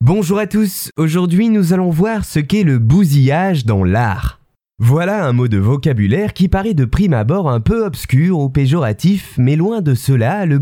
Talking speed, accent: 185 wpm, French